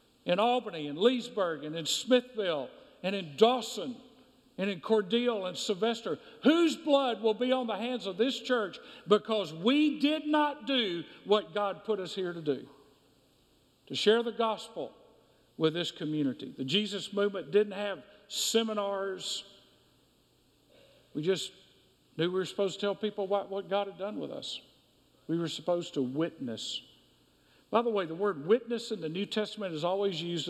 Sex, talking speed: male, 165 wpm